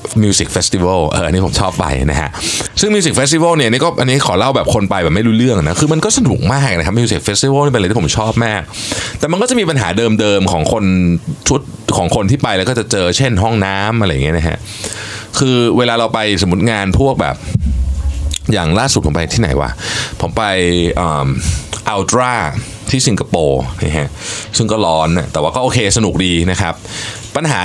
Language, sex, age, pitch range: Thai, male, 20-39, 90-125 Hz